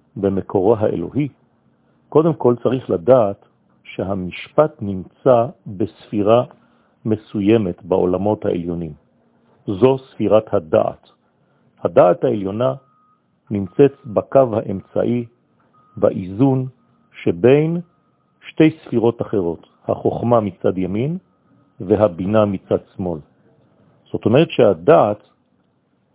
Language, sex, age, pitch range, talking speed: French, male, 50-69, 105-140 Hz, 70 wpm